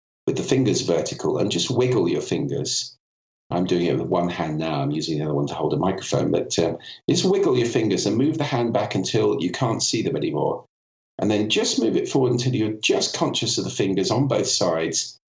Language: English